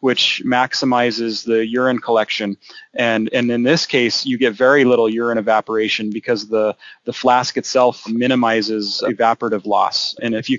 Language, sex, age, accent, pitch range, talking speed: English, male, 30-49, American, 110-125 Hz, 155 wpm